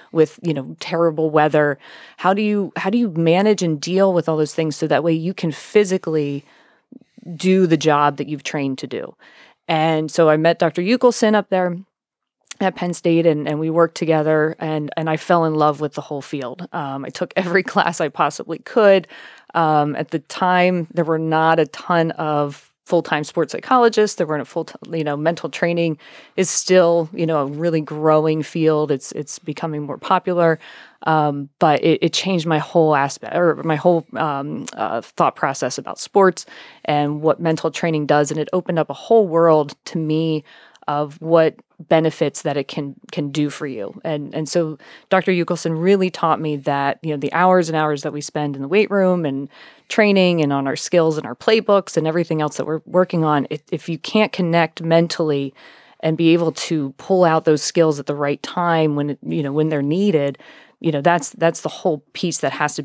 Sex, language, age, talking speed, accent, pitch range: female, English, 20-39, 205 wpm, American, 150-175 Hz